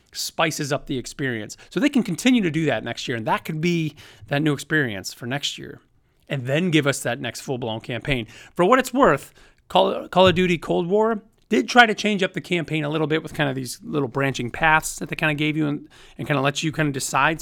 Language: English